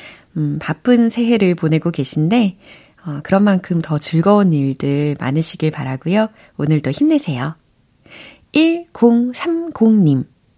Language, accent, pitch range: Korean, native, 150-225 Hz